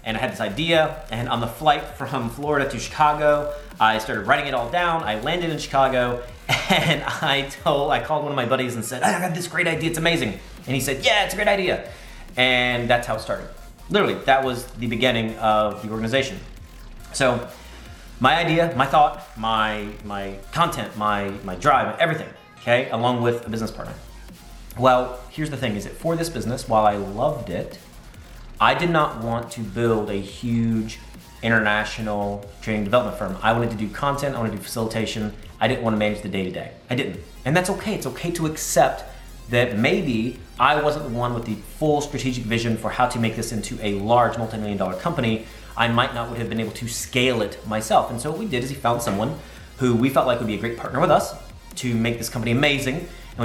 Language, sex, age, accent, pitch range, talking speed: English, male, 30-49, American, 110-140 Hz, 215 wpm